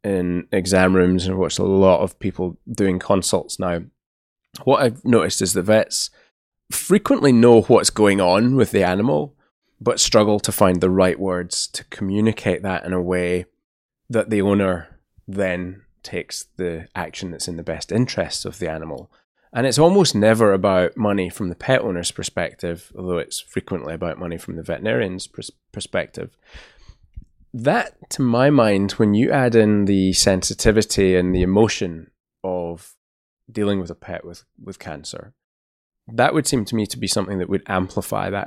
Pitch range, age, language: 90-110 Hz, 20-39, English